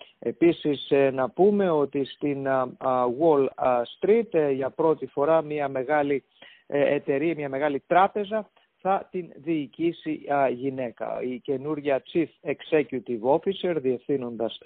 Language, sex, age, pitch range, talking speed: English, male, 50-69, 135-170 Hz, 105 wpm